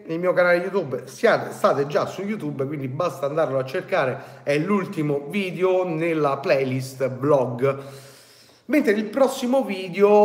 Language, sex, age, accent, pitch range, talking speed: Italian, male, 40-59, native, 145-200 Hz, 140 wpm